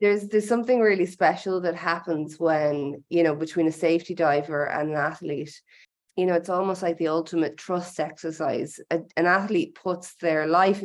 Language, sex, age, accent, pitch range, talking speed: English, female, 20-39, Irish, 155-180 Hz, 175 wpm